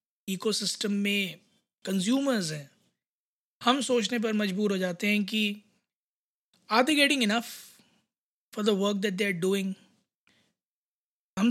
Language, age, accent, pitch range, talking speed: Hindi, 20-39, native, 190-225 Hz, 130 wpm